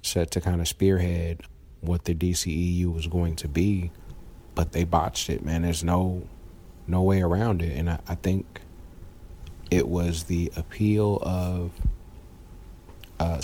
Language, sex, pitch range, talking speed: English, male, 85-95 Hz, 145 wpm